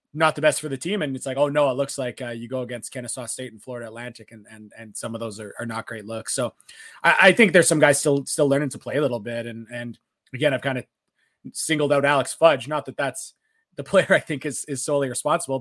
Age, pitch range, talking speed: 20-39, 130-150 Hz, 270 wpm